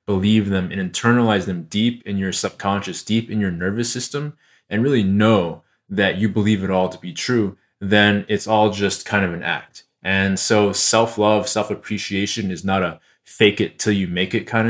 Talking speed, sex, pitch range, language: 190 wpm, male, 95-115 Hz, English